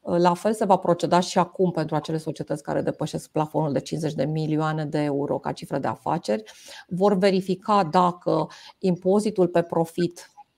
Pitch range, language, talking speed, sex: 155-190 Hz, Romanian, 165 wpm, female